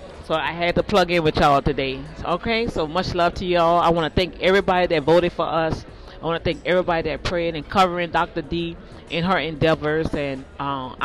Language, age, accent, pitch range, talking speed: English, 40-59, American, 155-185 Hz, 215 wpm